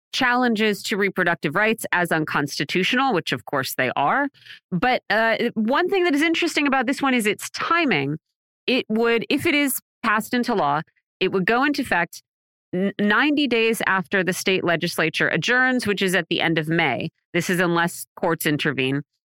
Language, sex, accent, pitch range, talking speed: English, female, American, 170-240 Hz, 175 wpm